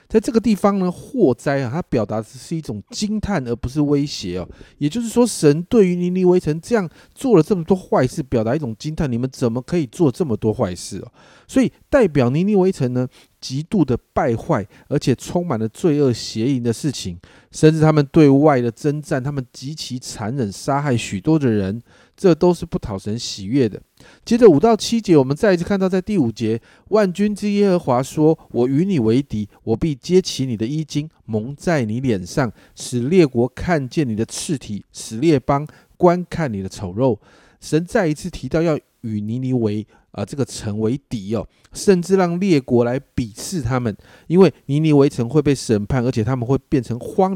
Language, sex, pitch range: Chinese, male, 115-170 Hz